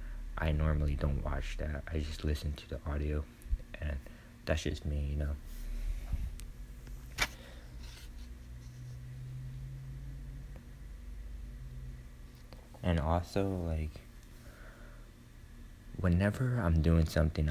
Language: English